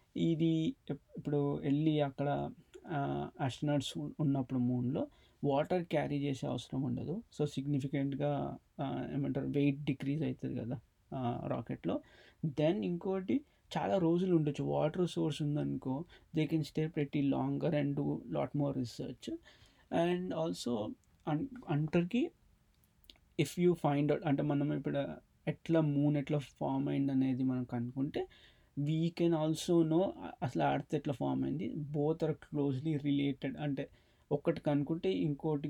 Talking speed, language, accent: 120 wpm, Telugu, native